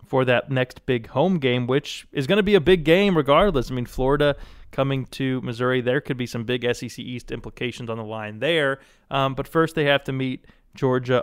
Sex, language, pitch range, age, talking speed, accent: male, English, 120-140 Hz, 20-39, 220 wpm, American